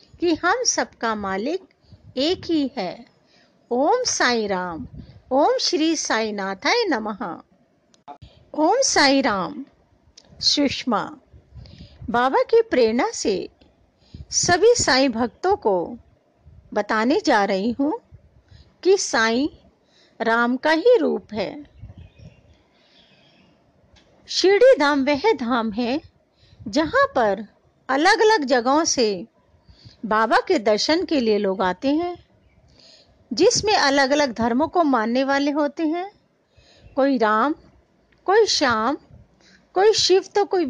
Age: 50-69